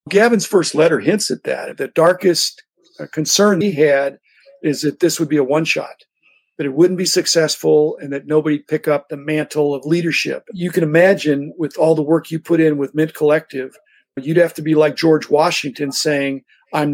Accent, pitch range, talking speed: American, 150-185 Hz, 195 wpm